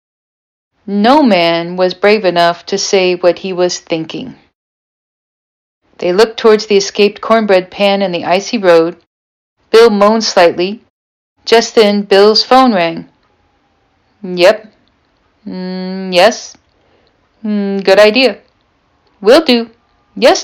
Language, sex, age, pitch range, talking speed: English, female, 40-59, 185-240 Hz, 115 wpm